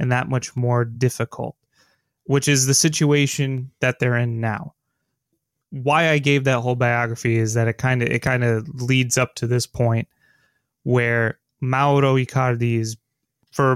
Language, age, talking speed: English, 20-39, 160 wpm